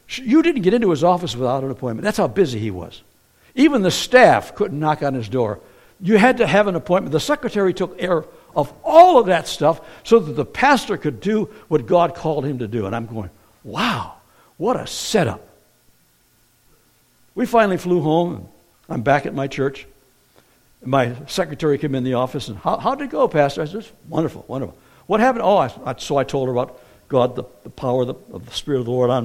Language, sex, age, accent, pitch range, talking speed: English, male, 60-79, American, 120-195 Hz, 210 wpm